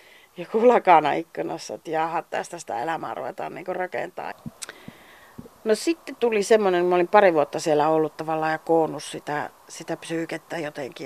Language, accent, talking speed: Finnish, native, 145 wpm